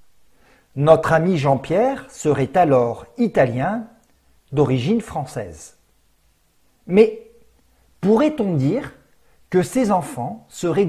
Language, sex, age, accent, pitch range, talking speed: French, male, 50-69, French, 140-210 Hz, 85 wpm